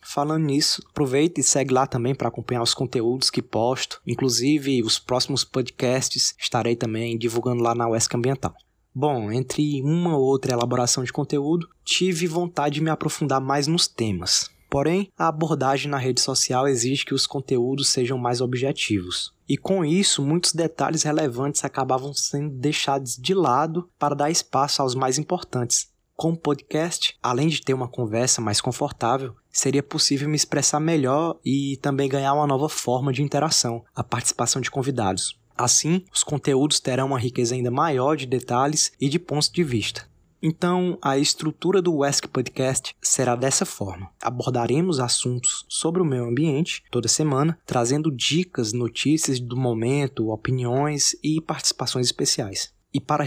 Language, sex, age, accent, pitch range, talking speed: Portuguese, male, 20-39, Brazilian, 125-150 Hz, 160 wpm